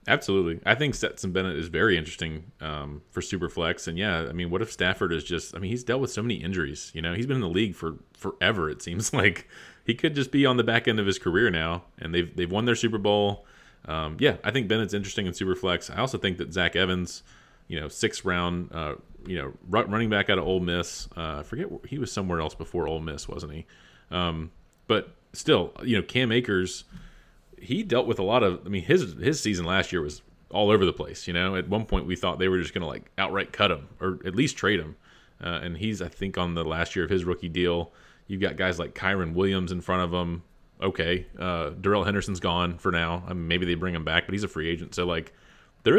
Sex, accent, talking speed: male, American, 250 wpm